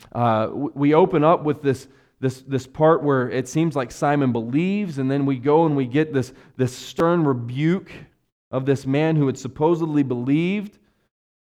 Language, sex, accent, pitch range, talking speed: English, male, American, 130-165 Hz, 175 wpm